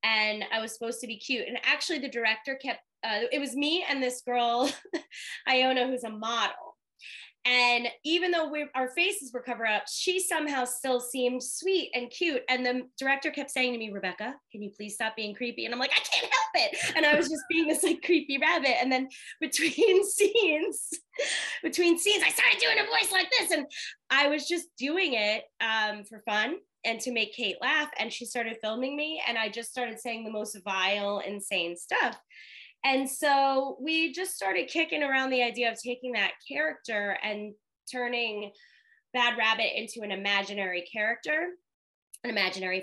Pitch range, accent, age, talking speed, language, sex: 220-305 Hz, American, 20-39, 185 wpm, English, female